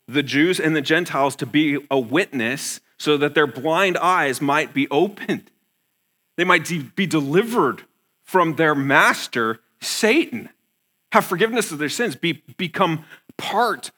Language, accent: English, American